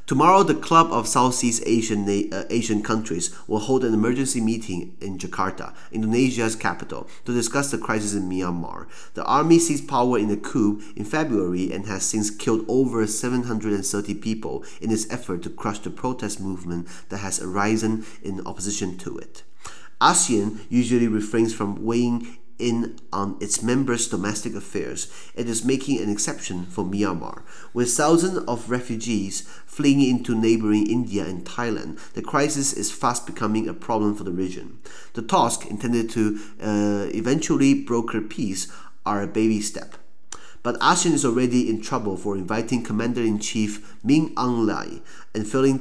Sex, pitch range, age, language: male, 100-120 Hz, 30-49, Chinese